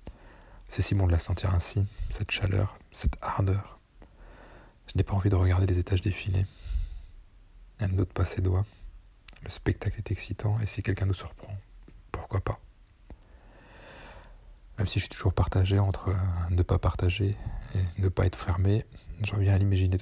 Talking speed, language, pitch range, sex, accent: 165 wpm, French, 90-100 Hz, male, French